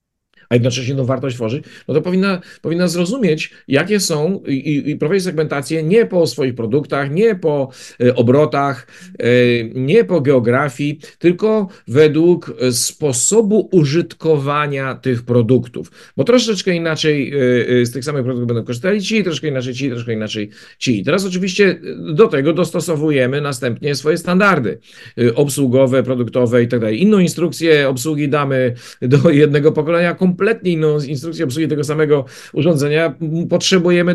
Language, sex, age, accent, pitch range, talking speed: Polish, male, 50-69, native, 130-175 Hz, 140 wpm